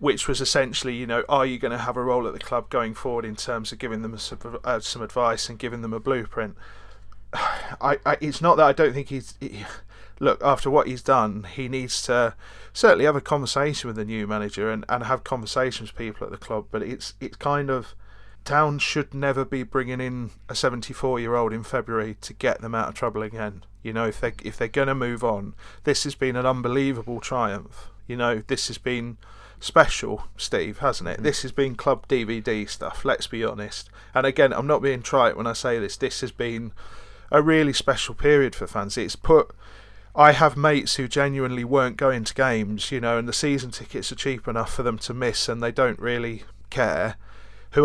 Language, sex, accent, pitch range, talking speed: English, male, British, 110-135 Hz, 210 wpm